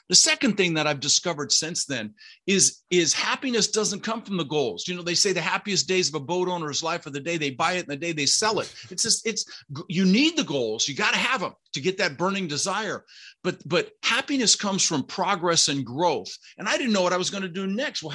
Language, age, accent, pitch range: English, 50-69, American, 150-200 Hz